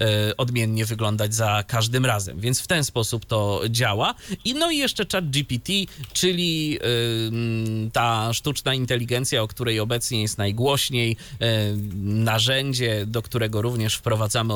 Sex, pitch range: male, 110-140 Hz